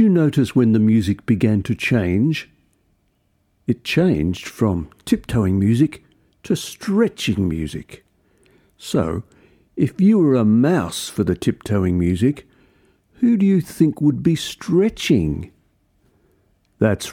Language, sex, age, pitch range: English, male, 60-79, 95-130 Hz